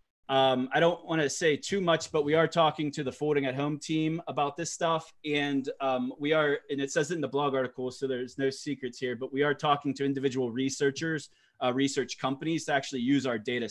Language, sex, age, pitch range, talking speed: English, male, 20-39, 130-155 Hz, 230 wpm